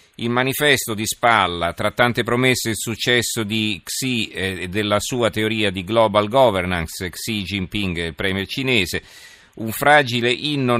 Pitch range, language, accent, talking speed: 95-115 Hz, Italian, native, 155 wpm